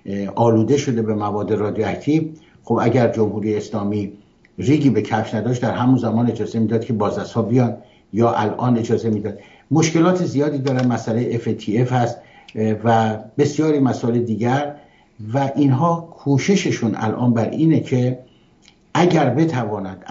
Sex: male